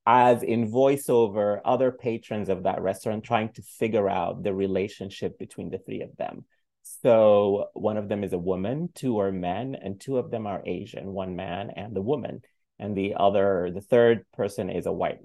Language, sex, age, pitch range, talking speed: English, male, 30-49, 95-125 Hz, 195 wpm